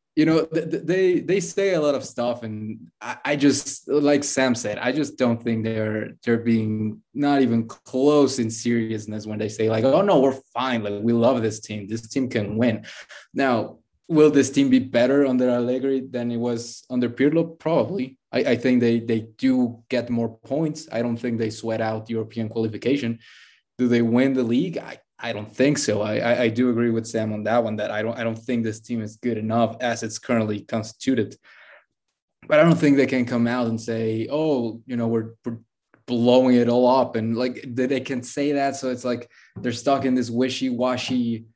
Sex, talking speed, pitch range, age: male, 205 wpm, 115-130 Hz, 20-39